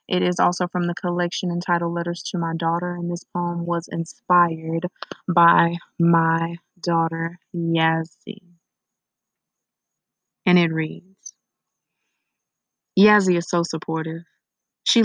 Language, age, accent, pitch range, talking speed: English, 20-39, American, 170-185 Hz, 110 wpm